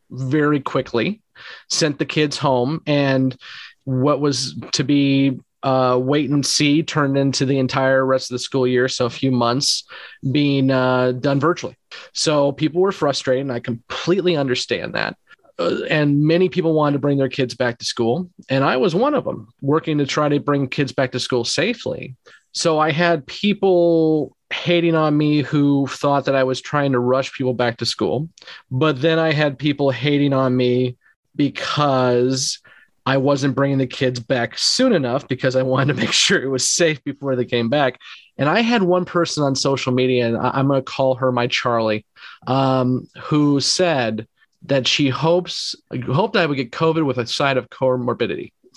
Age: 30-49